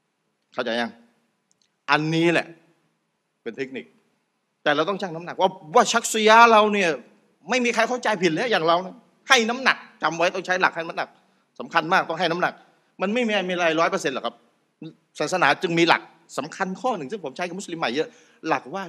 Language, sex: Thai, male